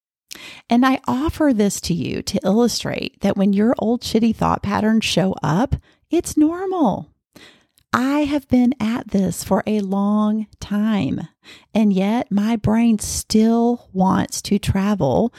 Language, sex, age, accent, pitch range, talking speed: English, female, 40-59, American, 180-240 Hz, 140 wpm